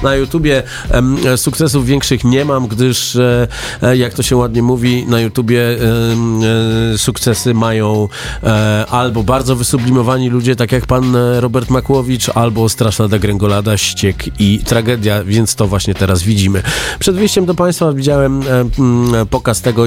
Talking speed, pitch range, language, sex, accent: 130 wpm, 110-130 Hz, Polish, male, native